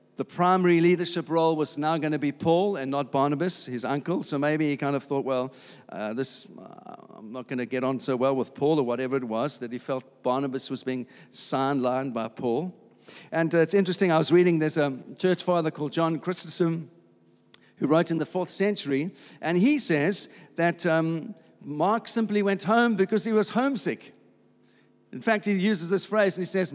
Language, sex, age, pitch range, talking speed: English, male, 50-69, 140-180 Hz, 200 wpm